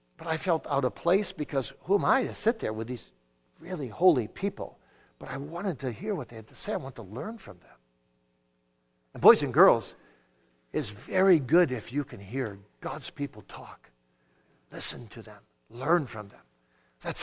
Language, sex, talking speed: English, male, 190 wpm